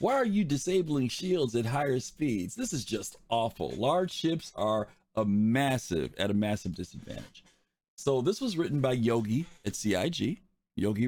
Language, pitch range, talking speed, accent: English, 105-150 Hz, 160 wpm, American